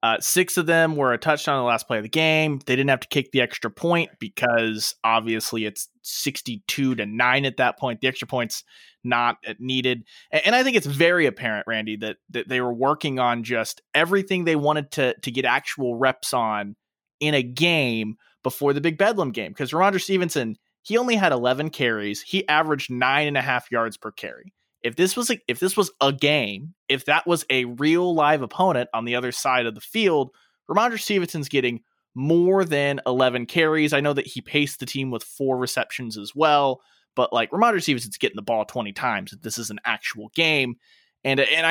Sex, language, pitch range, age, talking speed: male, English, 120-160 Hz, 20-39, 205 wpm